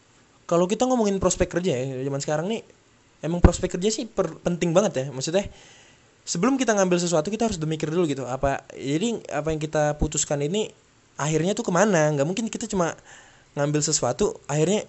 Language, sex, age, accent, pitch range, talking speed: Indonesian, male, 20-39, native, 135-195 Hz, 175 wpm